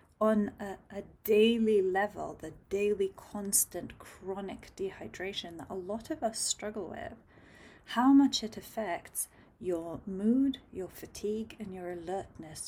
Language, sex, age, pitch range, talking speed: English, female, 30-49, 185-225 Hz, 135 wpm